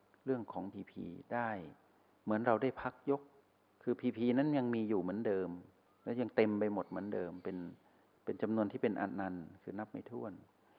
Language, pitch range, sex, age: Thai, 100-130 Hz, male, 60-79